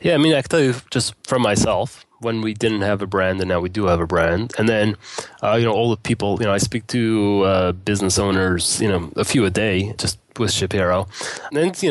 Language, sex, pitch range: English, male, 105-130 Hz